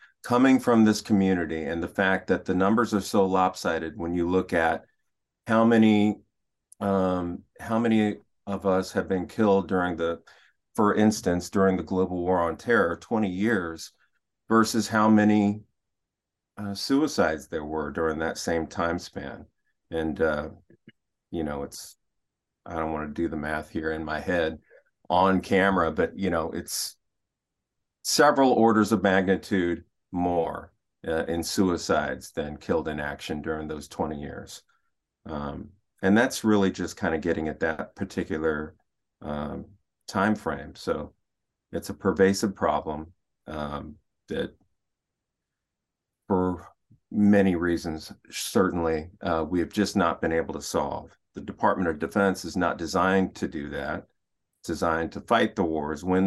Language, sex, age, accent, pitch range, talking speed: English, male, 40-59, American, 80-100 Hz, 150 wpm